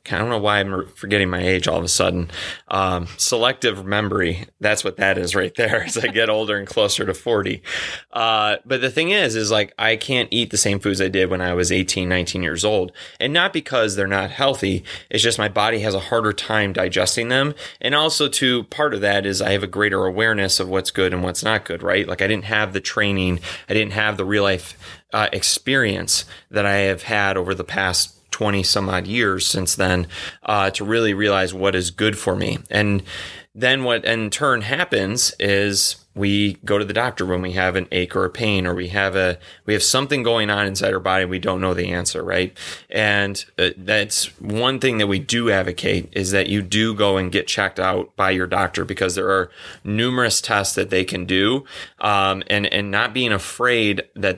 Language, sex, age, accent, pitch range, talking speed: English, male, 30-49, American, 95-110 Hz, 215 wpm